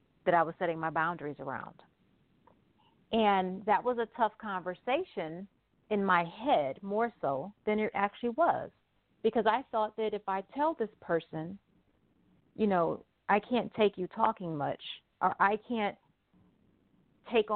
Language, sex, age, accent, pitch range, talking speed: English, female, 40-59, American, 180-235 Hz, 145 wpm